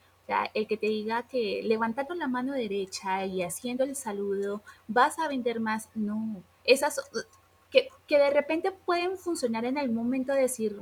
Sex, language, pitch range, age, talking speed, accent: female, Spanish, 195-250 Hz, 20-39, 165 wpm, Colombian